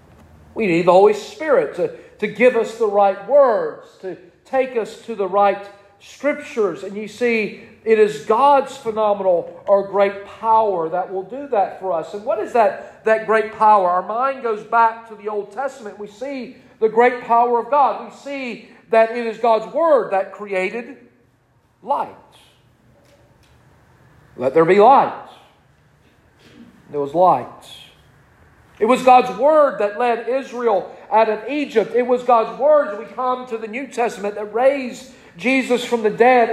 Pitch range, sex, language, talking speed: 205-260 Hz, male, English, 165 wpm